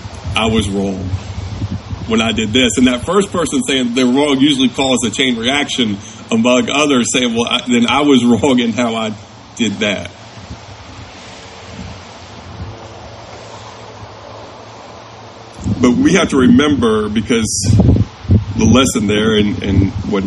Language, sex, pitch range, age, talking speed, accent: English, male, 100-115 Hz, 40-59, 135 wpm, American